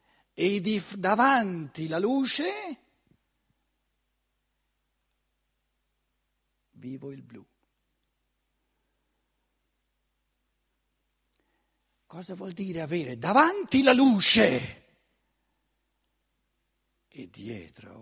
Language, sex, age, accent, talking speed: Italian, male, 60-79, native, 55 wpm